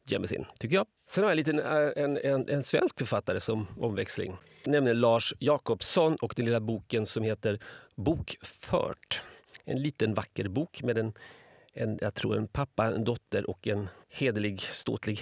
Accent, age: native, 40-59